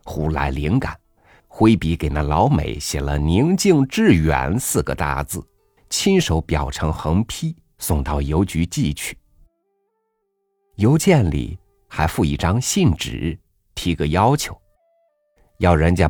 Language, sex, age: Chinese, male, 50-69